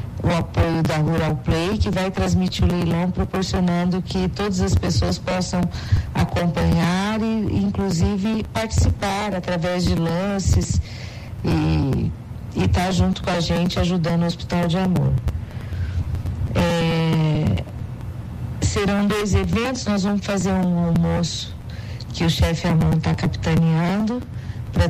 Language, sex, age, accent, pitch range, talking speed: Portuguese, female, 40-59, Brazilian, 110-180 Hz, 120 wpm